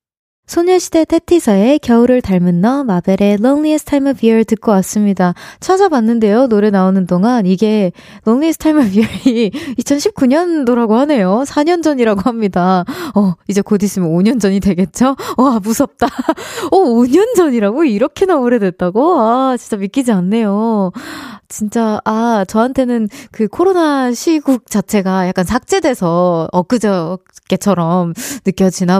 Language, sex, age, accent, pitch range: Korean, female, 20-39, native, 190-265 Hz